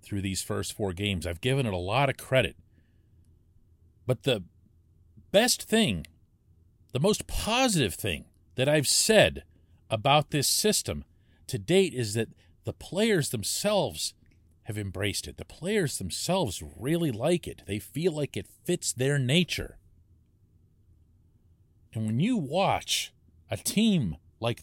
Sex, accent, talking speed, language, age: male, American, 135 wpm, English, 40-59